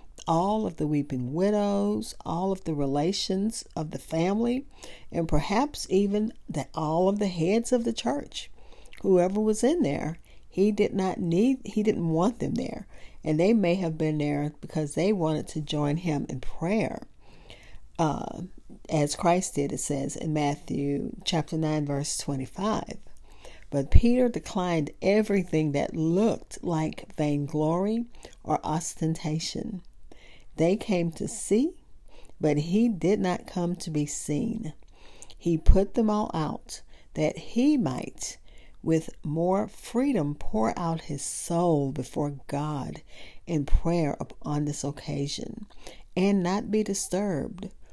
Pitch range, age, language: 150-200 Hz, 50-69, English